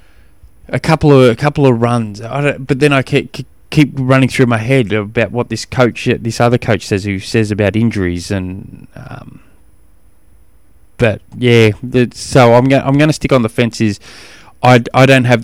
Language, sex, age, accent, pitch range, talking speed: English, male, 20-39, Australian, 95-130 Hz, 185 wpm